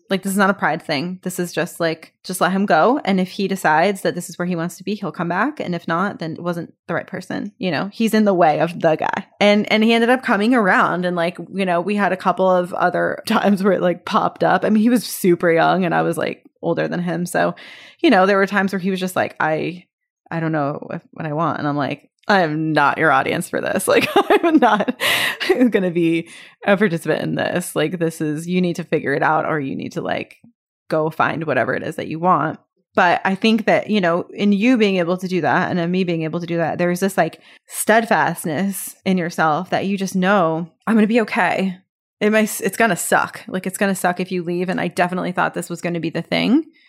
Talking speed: 260 wpm